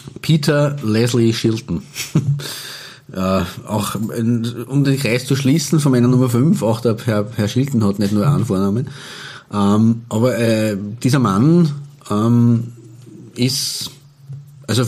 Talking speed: 125 wpm